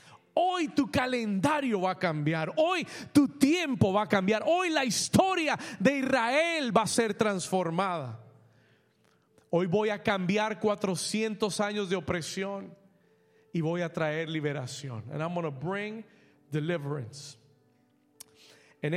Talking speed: 130 wpm